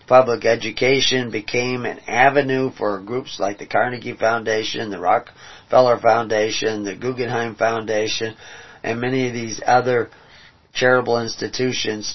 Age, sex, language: 40-59, male, English